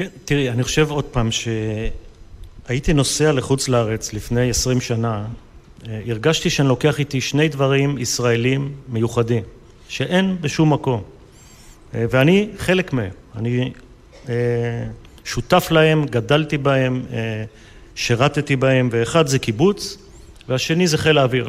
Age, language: 40-59, Hebrew